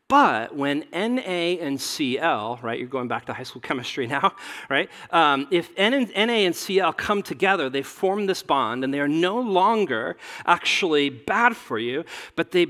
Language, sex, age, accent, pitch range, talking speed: English, male, 40-59, American, 140-205 Hz, 175 wpm